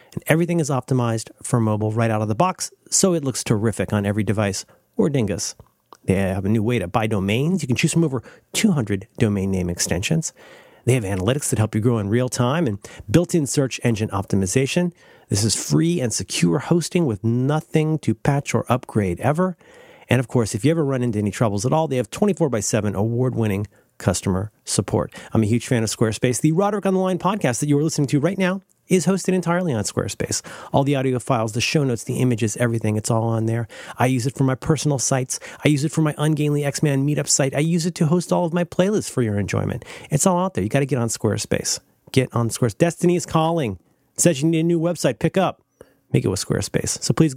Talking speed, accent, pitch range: 230 wpm, American, 110-165 Hz